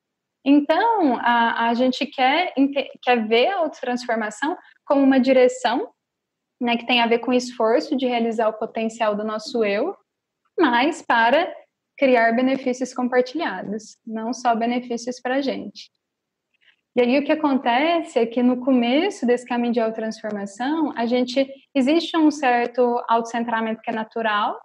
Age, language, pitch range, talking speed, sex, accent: 10-29, Portuguese, 225-265 Hz, 145 wpm, female, Brazilian